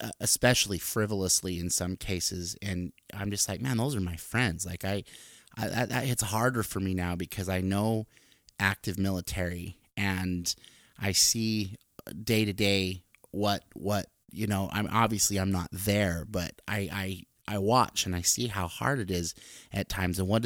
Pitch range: 90-105 Hz